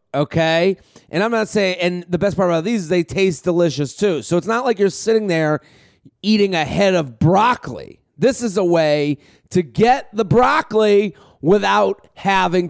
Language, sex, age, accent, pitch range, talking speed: English, male, 30-49, American, 155-195 Hz, 180 wpm